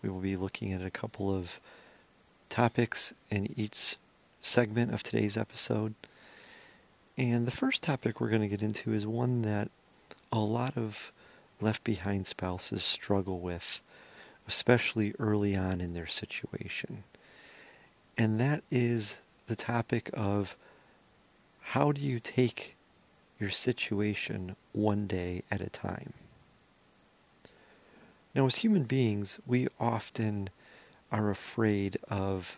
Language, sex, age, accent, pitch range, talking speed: English, male, 40-59, American, 100-115 Hz, 120 wpm